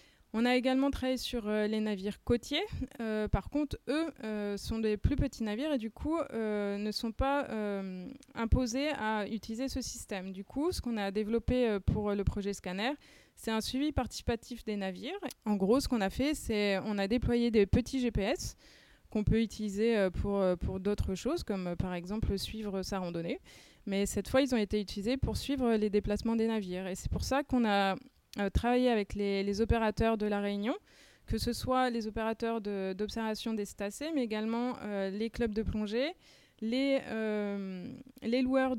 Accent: French